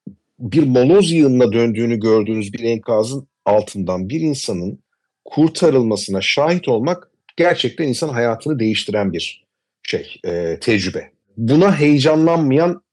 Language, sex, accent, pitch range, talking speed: Turkish, male, native, 105-175 Hz, 105 wpm